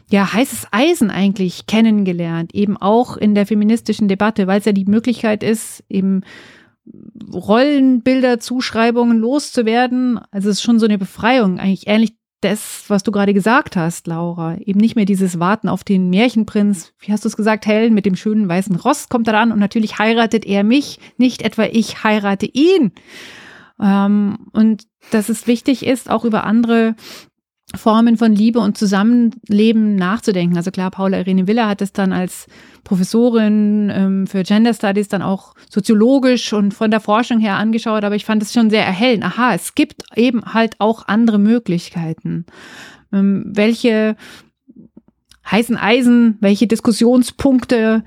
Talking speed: 155 wpm